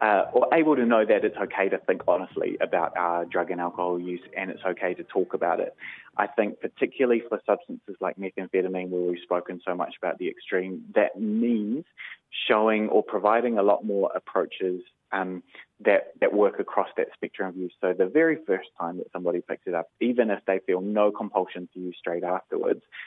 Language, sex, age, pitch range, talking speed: English, male, 20-39, 90-105 Hz, 200 wpm